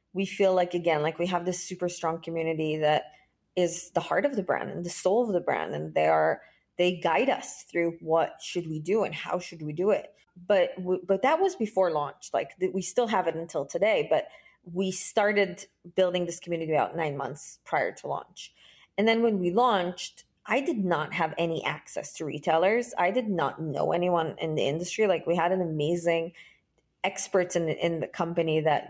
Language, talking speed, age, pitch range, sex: English, 205 wpm, 20-39, 165-195 Hz, female